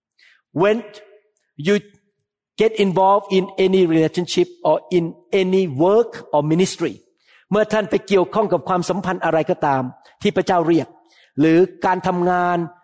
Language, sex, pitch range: Thai, male, 190-265 Hz